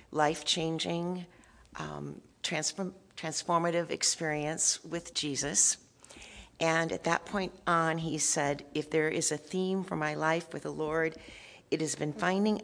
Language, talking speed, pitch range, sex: English, 140 wpm, 150-180 Hz, female